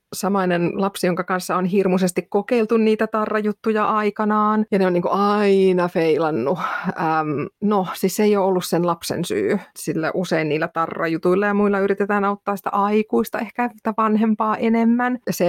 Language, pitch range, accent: Finnish, 165-210 Hz, native